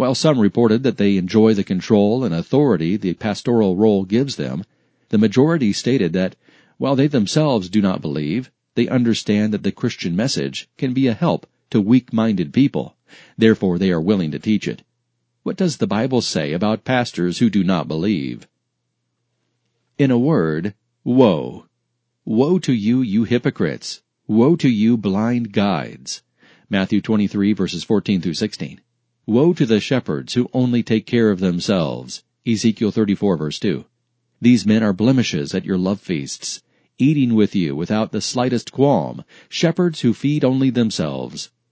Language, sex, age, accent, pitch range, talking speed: English, male, 40-59, American, 100-125 Hz, 155 wpm